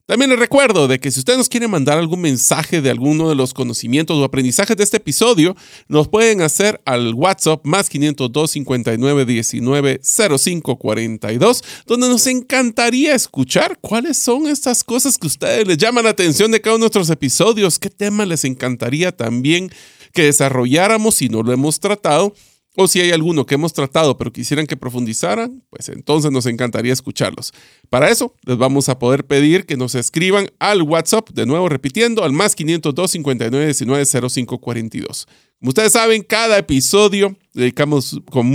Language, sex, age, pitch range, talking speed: Spanish, male, 40-59, 130-205 Hz, 160 wpm